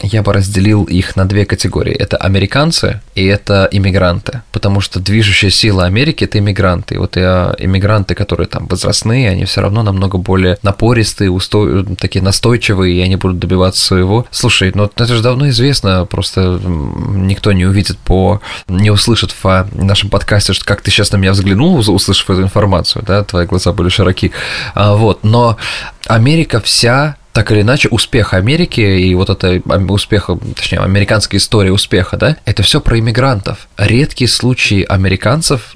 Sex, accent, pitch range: male, native, 95-115 Hz